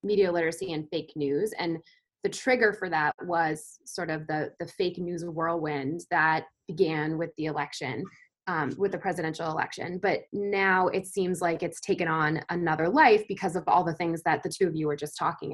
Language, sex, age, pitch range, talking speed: English, female, 20-39, 160-200 Hz, 195 wpm